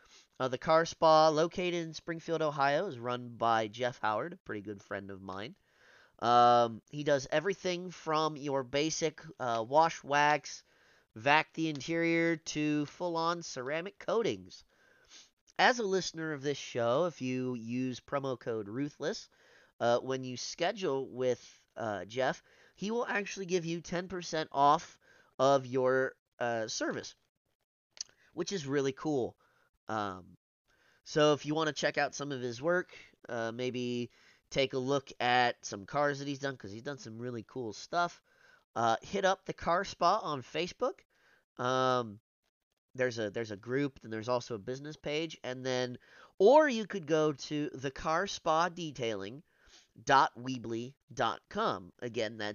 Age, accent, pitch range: 30-49, American, 120-160 Hz